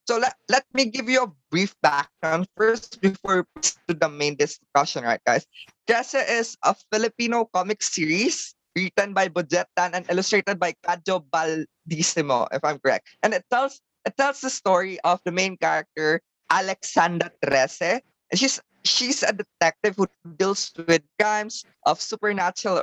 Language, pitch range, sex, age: Filipino, 180-225 Hz, female, 20-39